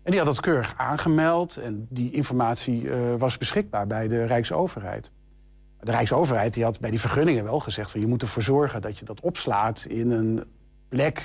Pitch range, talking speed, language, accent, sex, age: 110-135 Hz, 180 wpm, Dutch, Dutch, male, 50-69